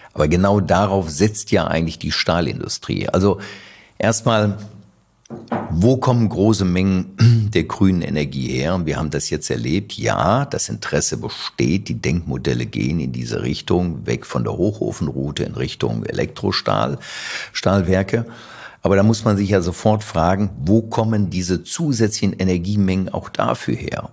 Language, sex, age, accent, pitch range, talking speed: German, male, 50-69, German, 80-105 Hz, 140 wpm